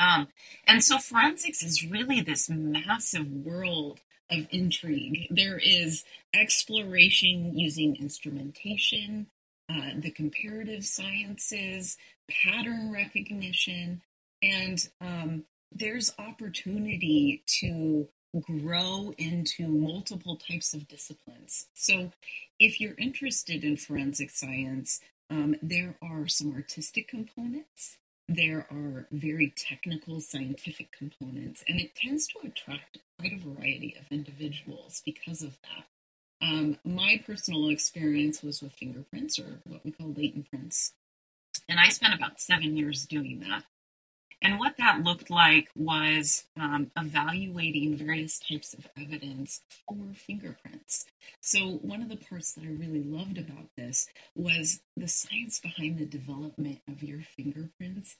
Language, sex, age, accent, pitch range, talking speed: English, female, 30-49, American, 150-200 Hz, 125 wpm